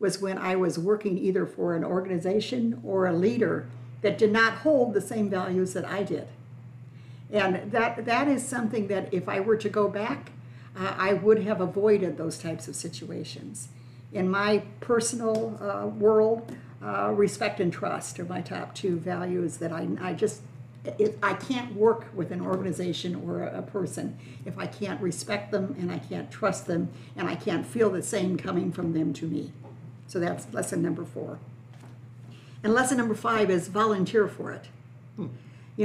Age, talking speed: 60-79, 175 wpm